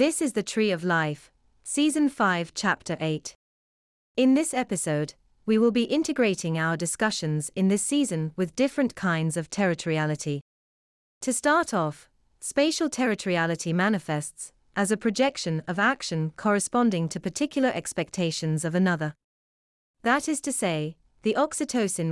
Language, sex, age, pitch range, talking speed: English, female, 30-49, 160-230 Hz, 135 wpm